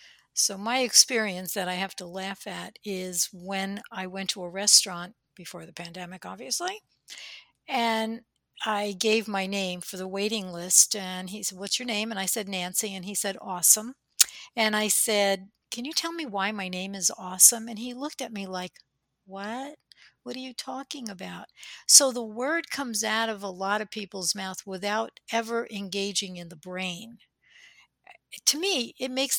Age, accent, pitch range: 60-79, American, 185-230 Hz